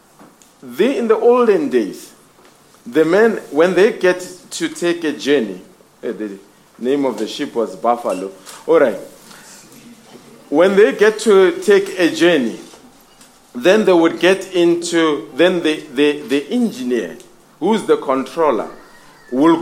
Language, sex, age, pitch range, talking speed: English, male, 40-59, 145-225 Hz, 130 wpm